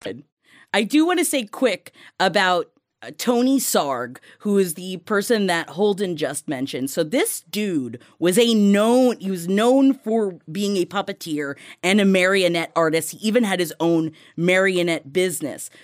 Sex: female